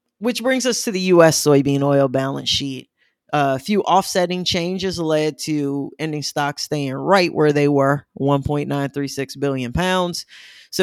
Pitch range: 140-175 Hz